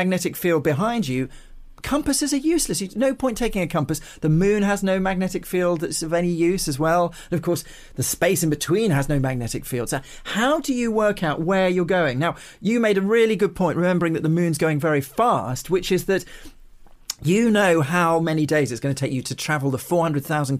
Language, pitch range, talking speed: English, 145-195 Hz, 220 wpm